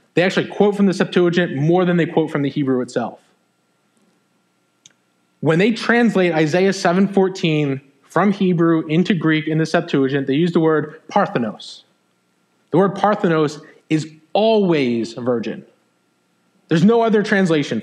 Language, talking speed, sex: English, 140 wpm, male